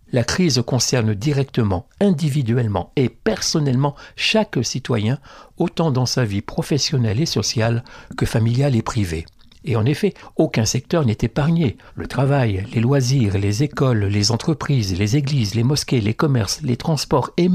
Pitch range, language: 110-150 Hz, French